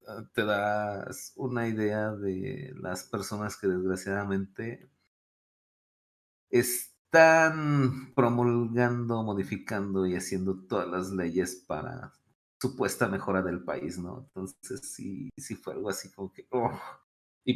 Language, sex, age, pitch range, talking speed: Spanish, male, 30-49, 95-120 Hz, 110 wpm